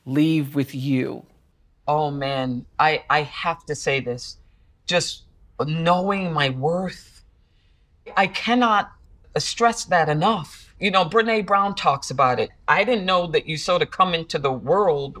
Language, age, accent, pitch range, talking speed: English, 40-59, American, 140-200 Hz, 150 wpm